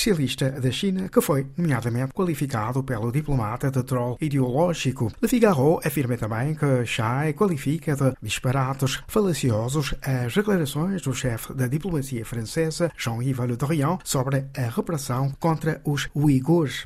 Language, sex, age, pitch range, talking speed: Portuguese, male, 50-69, 125-160 Hz, 130 wpm